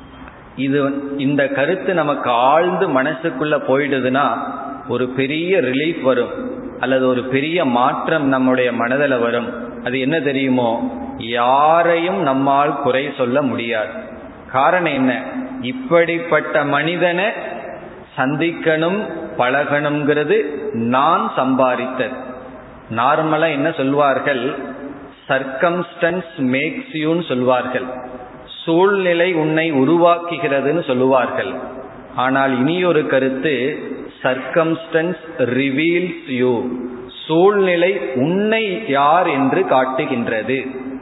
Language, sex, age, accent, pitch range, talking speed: Tamil, male, 30-49, native, 130-175 Hz, 65 wpm